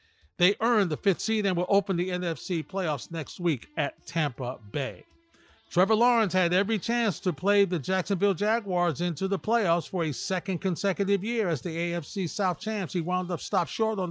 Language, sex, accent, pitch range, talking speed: English, male, American, 160-195 Hz, 190 wpm